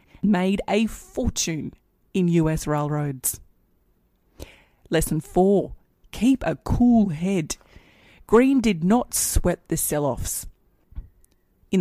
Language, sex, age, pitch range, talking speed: English, female, 30-49, 160-215 Hz, 95 wpm